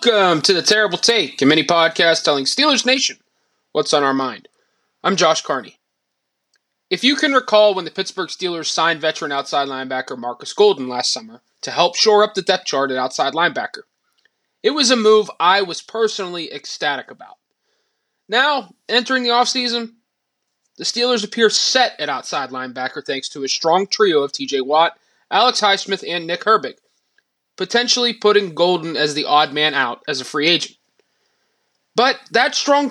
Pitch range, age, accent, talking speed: 155-240 Hz, 20-39, American, 165 wpm